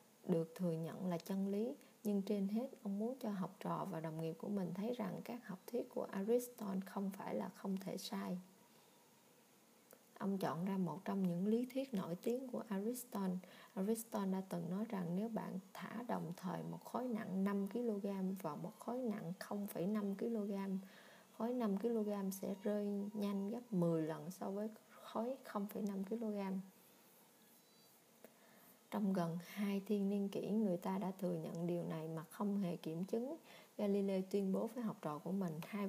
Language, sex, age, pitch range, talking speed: Vietnamese, female, 20-39, 185-225 Hz, 175 wpm